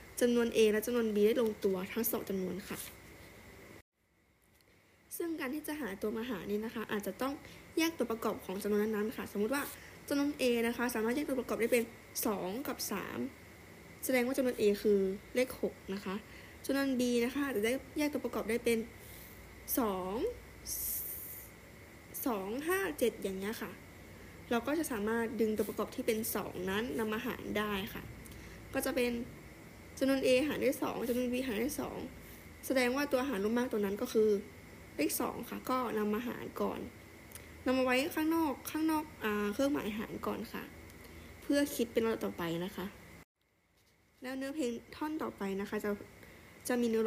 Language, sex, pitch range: Thai, female, 205-260 Hz